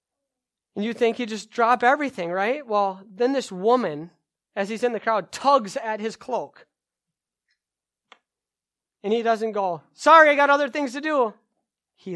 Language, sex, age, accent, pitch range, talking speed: English, male, 30-49, American, 180-235 Hz, 165 wpm